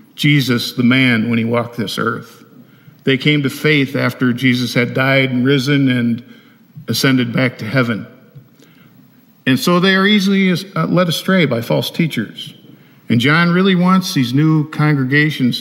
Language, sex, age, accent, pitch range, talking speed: English, male, 50-69, American, 130-170 Hz, 155 wpm